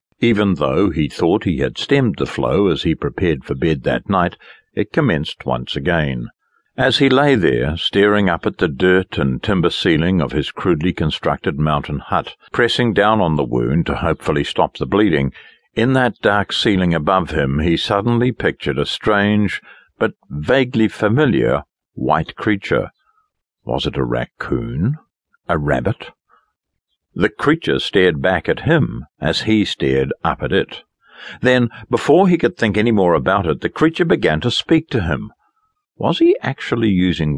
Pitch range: 85-130 Hz